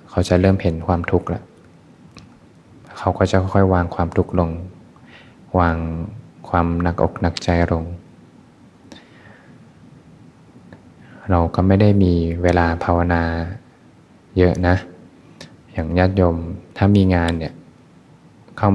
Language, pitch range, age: Thai, 85-95 Hz, 20-39